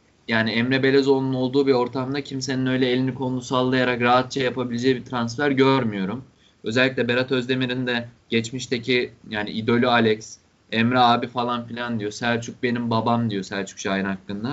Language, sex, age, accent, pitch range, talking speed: Turkish, male, 20-39, native, 115-145 Hz, 150 wpm